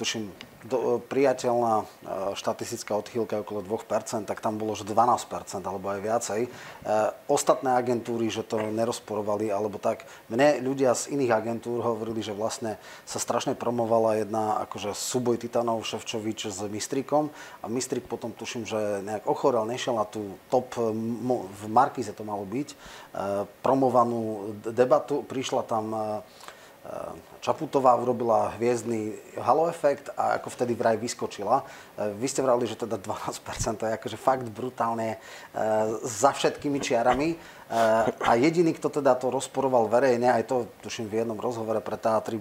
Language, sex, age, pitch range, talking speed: Slovak, male, 30-49, 110-125 Hz, 145 wpm